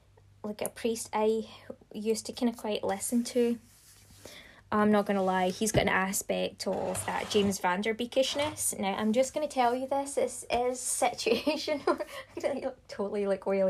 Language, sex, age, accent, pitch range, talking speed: English, female, 20-39, British, 200-250 Hz, 180 wpm